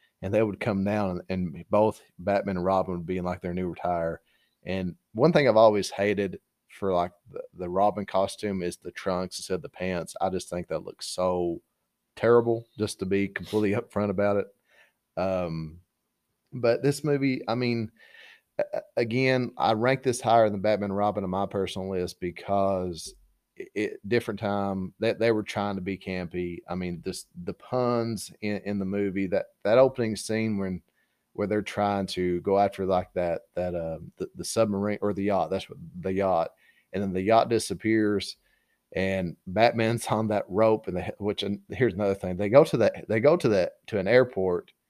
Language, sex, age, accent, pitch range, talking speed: English, male, 30-49, American, 95-110 Hz, 185 wpm